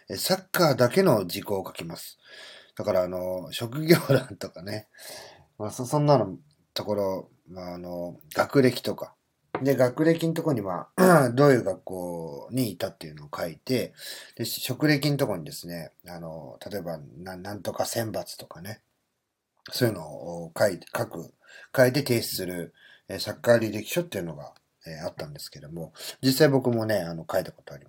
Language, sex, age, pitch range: Japanese, male, 40-59, 90-135 Hz